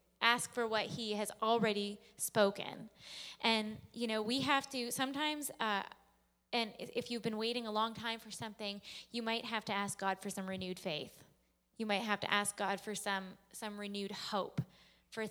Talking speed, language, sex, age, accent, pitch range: 185 wpm, English, female, 20-39, American, 195-220 Hz